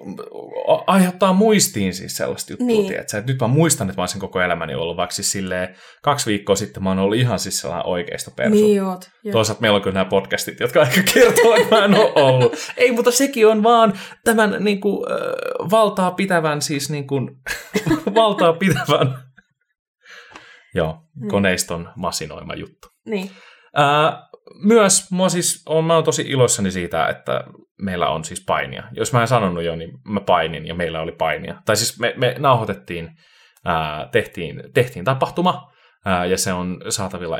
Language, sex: Finnish, male